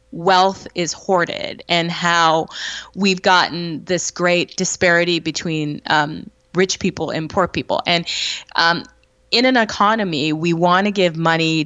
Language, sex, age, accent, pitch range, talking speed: English, female, 20-39, American, 165-210 Hz, 140 wpm